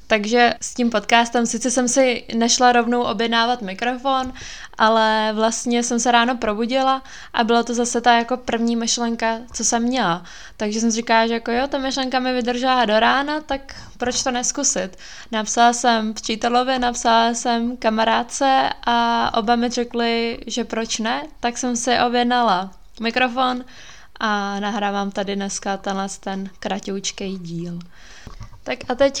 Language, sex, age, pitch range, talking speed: Czech, female, 20-39, 205-245 Hz, 150 wpm